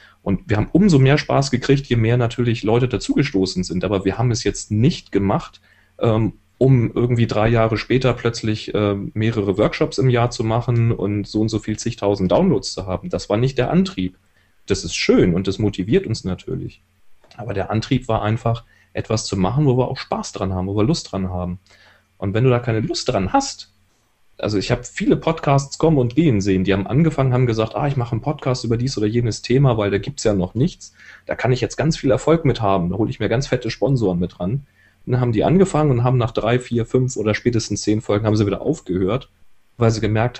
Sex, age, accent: male, 30-49, German